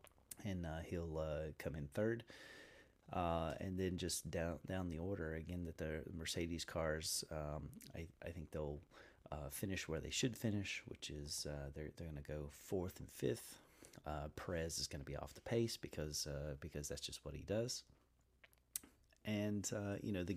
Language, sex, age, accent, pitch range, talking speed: English, male, 30-49, American, 75-90 Hz, 190 wpm